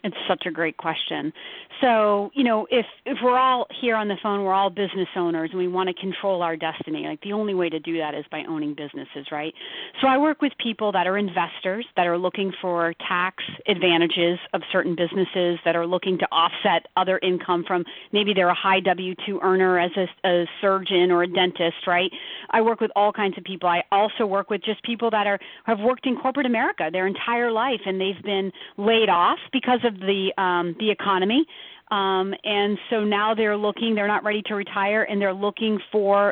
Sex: female